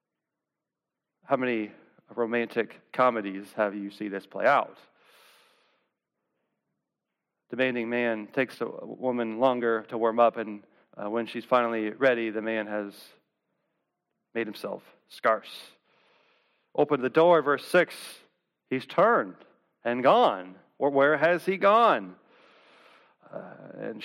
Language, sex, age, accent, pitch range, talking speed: English, male, 40-59, American, 120-170 Hz, 115 wpm